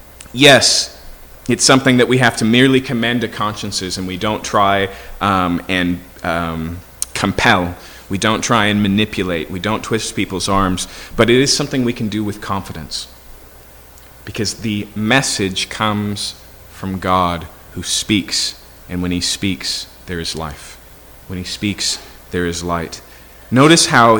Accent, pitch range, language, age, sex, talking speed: American, 90-115 Hz, English, 30-49, male, 150 wpm